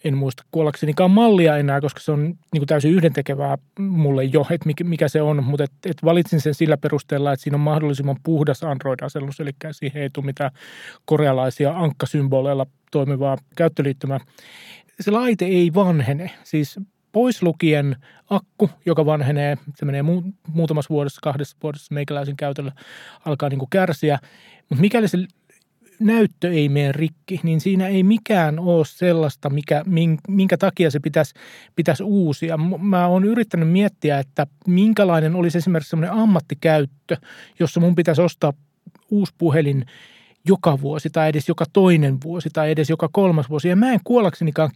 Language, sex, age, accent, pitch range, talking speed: Finnish, male, 30-49, native, 145-185 Hz, 140 wpm